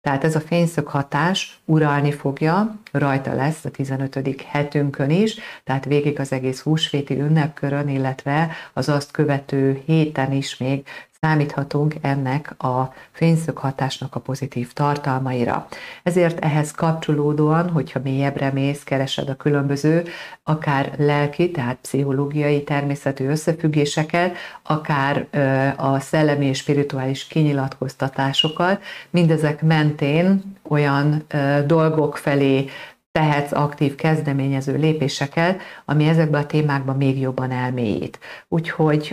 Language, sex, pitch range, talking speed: Hungarian, female, 135-155 Hz, 110 wpm